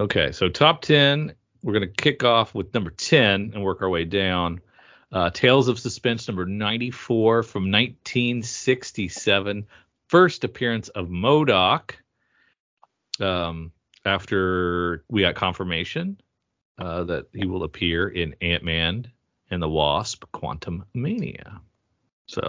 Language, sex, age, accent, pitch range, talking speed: English, male, 40-59, American, 85-115 Hz, 125 wpm